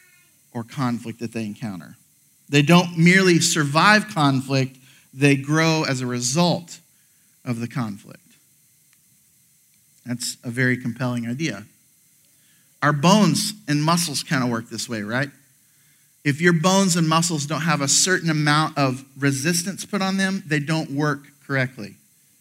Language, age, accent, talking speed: English, 40-59, American, 140 wpm